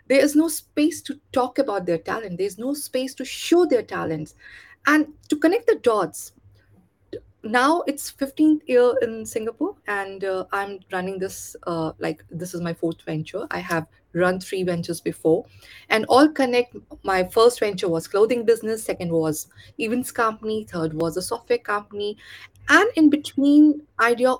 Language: English